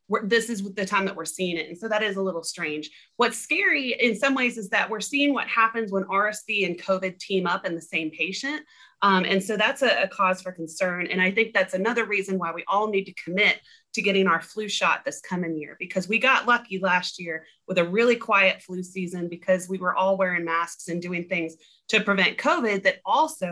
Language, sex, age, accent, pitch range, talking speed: English, female, 30-49, American, 180-225 Hz, 230 wpm